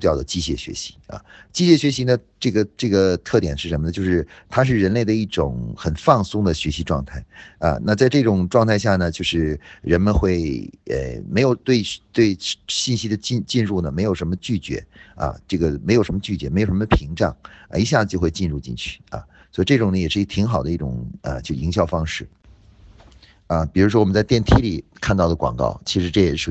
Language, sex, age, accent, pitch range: Chinese, male, 50-69, native, 75-105 Hz